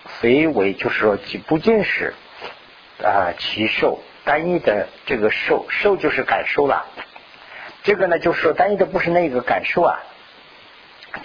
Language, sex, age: Chinese, male, 50-69